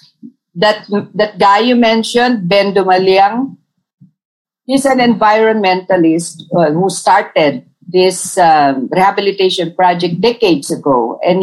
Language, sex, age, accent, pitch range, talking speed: English, female, 50-69, Filipino, 175-245 Hz, 100 wpm